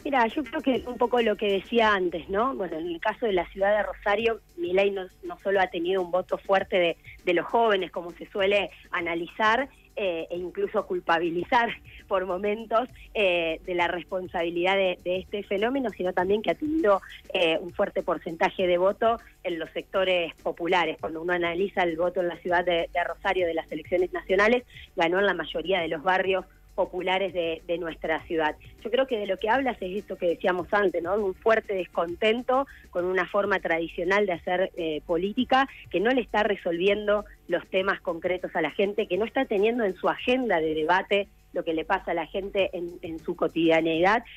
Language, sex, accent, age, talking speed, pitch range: Spanish, female, Argentinian, 20-39, 205 wpm, 175-210 Hz